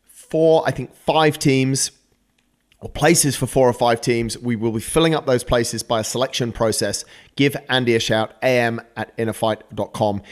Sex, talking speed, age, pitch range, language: male, 170 wpm, 30-49, 115-140 Hz, English